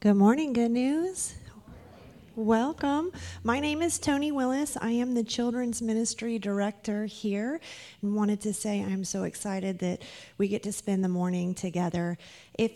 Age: 30-49